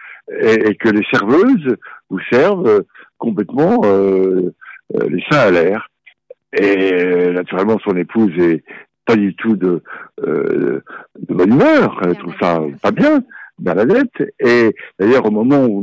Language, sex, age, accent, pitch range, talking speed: French, male, 60-79, French, 95-155 Hz, 150 wpm